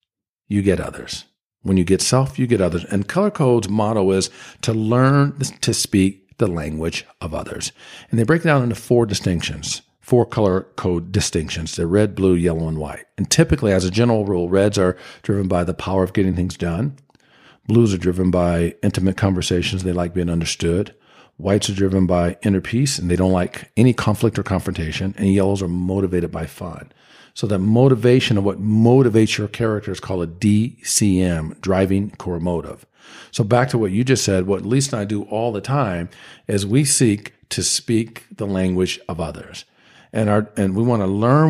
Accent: American